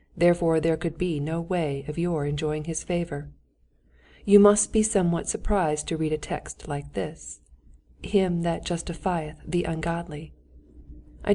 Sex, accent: female, American